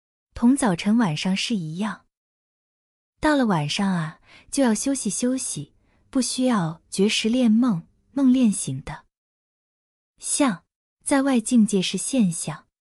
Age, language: 20-39, Chinese